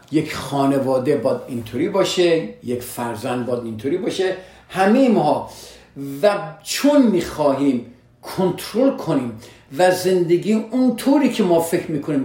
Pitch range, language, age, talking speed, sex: 120-180 Hz, Persian, 50-69, 120 wpm, male